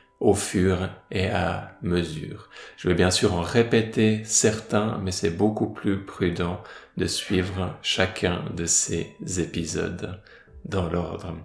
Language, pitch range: French, 90-110 Hz